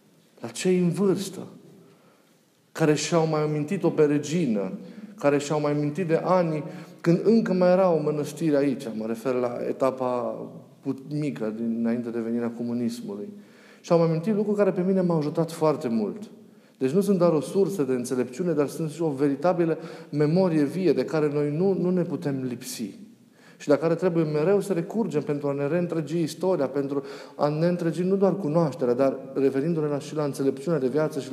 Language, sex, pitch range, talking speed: Romanian, male, 135-175 Hz, 175 wpm